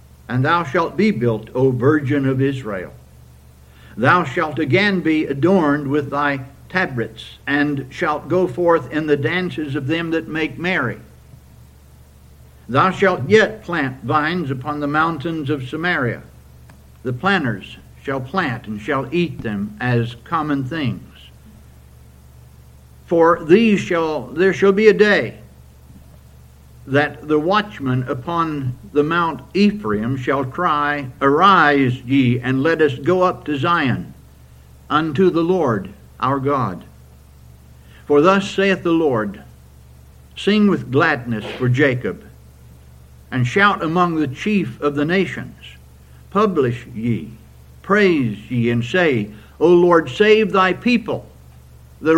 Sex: male